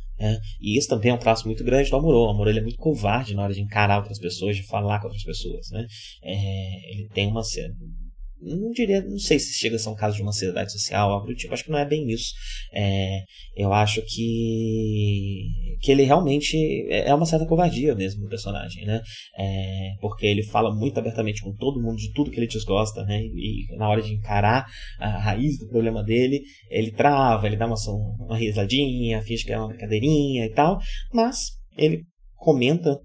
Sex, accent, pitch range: male, Brazilian, 105-130 Hz